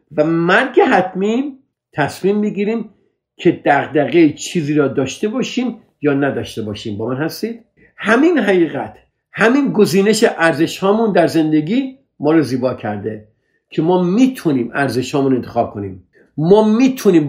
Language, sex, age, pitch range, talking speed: Persian, male, 50-69, 115-175 Hz, 130 wpm